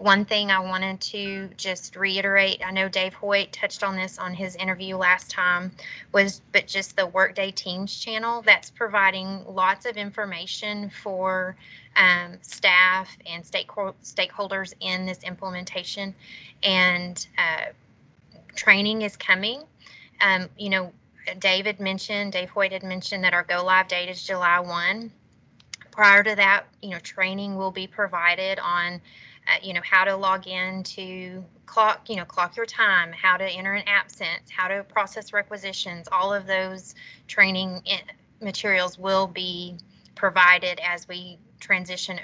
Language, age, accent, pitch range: English, 20-39, American, 180-200 Hz